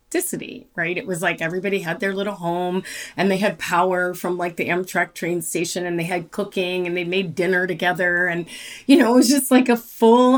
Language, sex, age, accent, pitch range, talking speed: English, female, 30-49, American, 175-220 Hz, 215 wpm